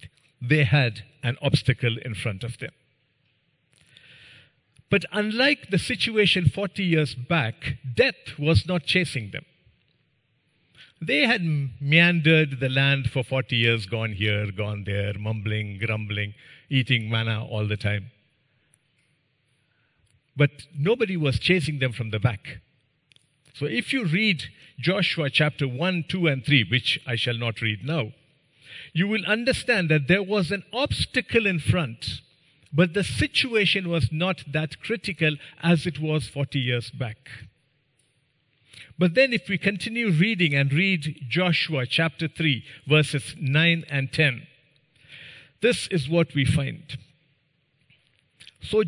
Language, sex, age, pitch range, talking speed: English, male, 50-69, 130-170 Hz, 130 wpm